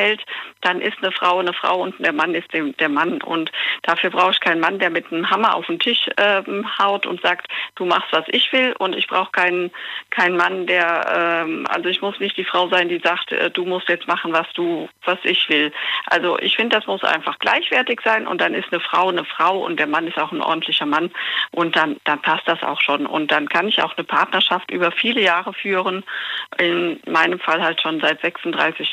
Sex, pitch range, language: female, 170-205 Hz, German